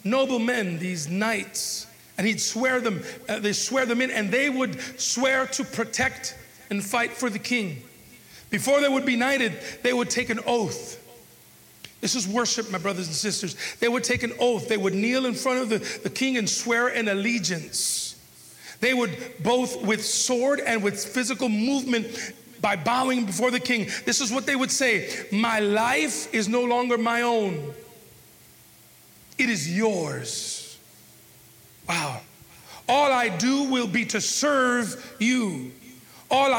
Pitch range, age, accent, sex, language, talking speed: 210-260 Hz, 40-59, American, male, English, 160 wpm